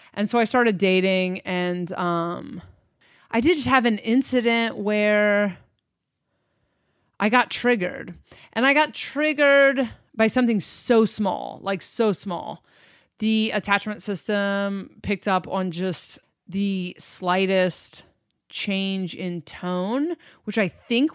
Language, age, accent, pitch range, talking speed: English, 20-39, American, 185-230 Hz, 120 wpm